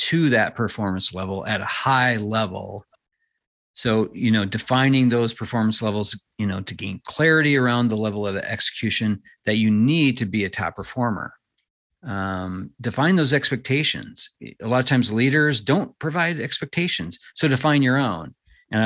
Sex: male